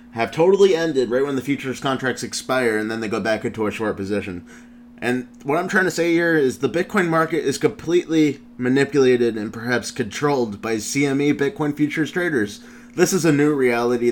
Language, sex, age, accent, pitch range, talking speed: English, male, 30-49, American, 115-150 Hz, 190 wpm